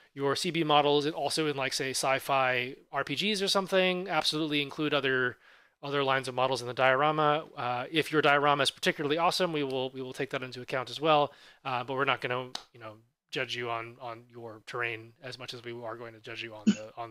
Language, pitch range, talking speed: English, 130-165 Hz, 230 wpm